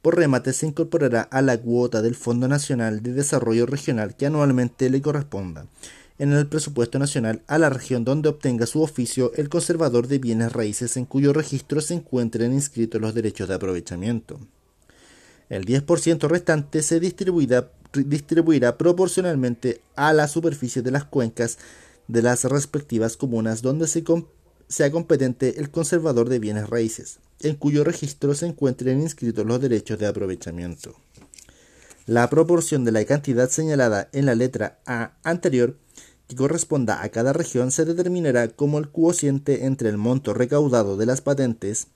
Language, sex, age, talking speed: Spanish, male, 30-49, 150 wpm